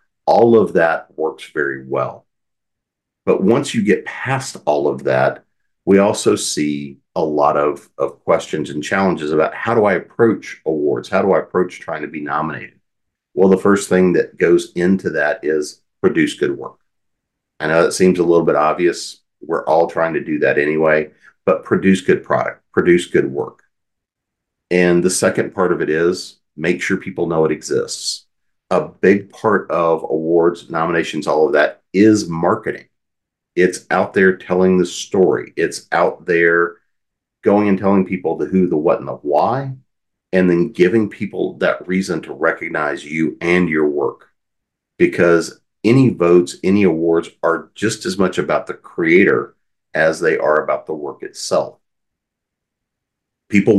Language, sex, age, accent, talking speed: English, male, 50-69, American, 165 wpm